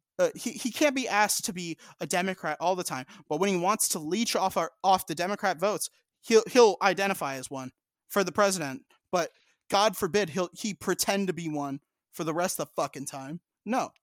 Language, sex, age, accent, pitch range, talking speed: English, male, 30-49, American, 170-225 Hz, 215 wpm